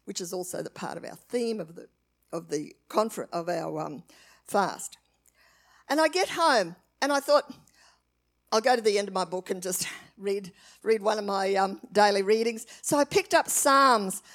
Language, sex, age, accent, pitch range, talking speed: English, female, 50-69, Australian, 195-275 Hz, 190 wpm